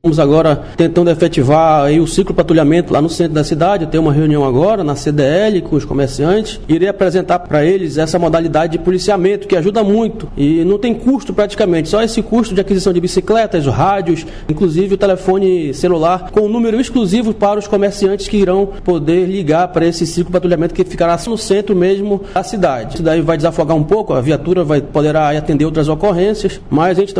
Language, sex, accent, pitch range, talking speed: Portuguese, male, Brazilian, 155-195 Hz, 190 wpm